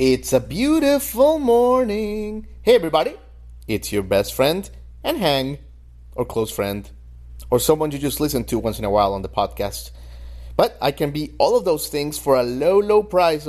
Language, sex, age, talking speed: English, male, 30-49, 180 wpm